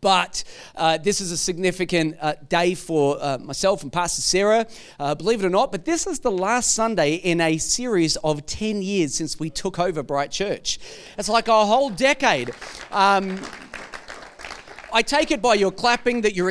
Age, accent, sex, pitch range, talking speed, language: 40-59, Australian, male, 145-205 Hz, 180 wpm, English